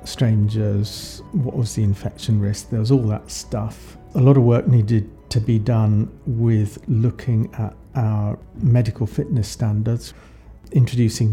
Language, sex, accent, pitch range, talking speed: English, male, British, 105-120 Hz, 145 wpm